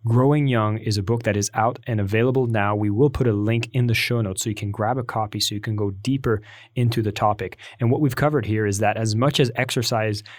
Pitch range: 110-130 Hz